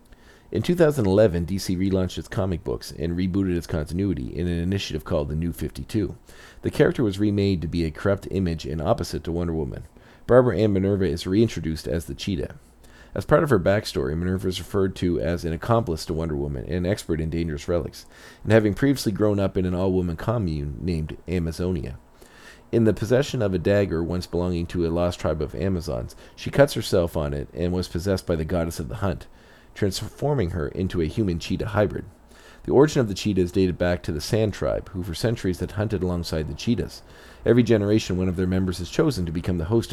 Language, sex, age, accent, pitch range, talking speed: English, male, 40-59, American, 80-100 Hz, 205 wpm